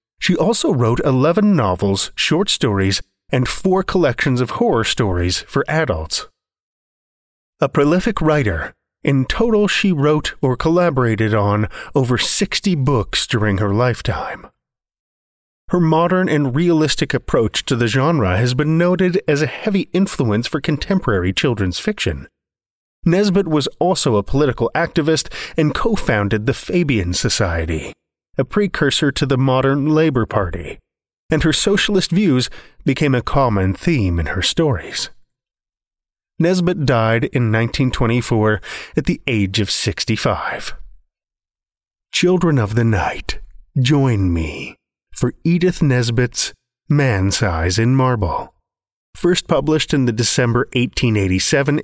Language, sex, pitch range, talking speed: English, male, 105-155 Hz, 125 wpm